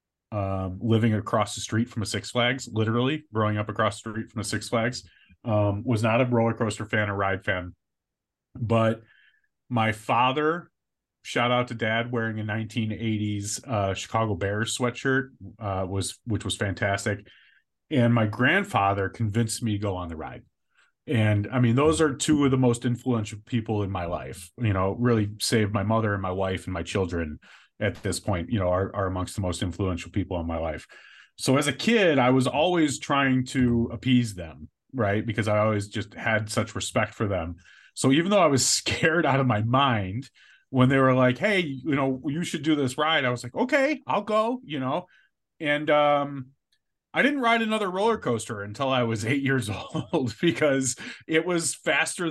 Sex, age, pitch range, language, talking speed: male, 30-49, 105-135 Hz, English, 195 wpm